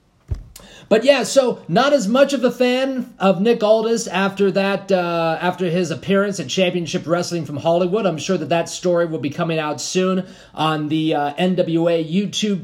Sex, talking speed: male, 180 wpm